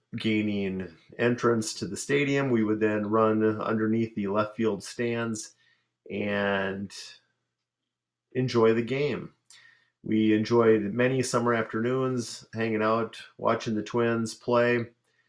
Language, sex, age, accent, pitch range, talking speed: English, male, 40-59, American, 110-120 Hz, 115 wpm